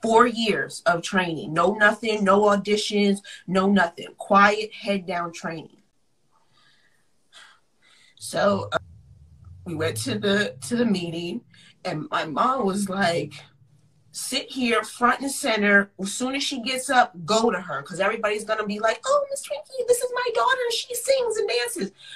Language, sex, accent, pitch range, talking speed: English, female, American, 175-235 Hz, 155 wpm